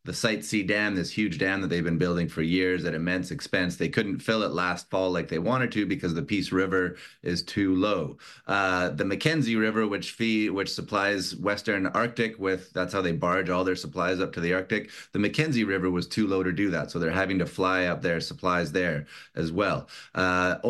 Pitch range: 90-110 Hz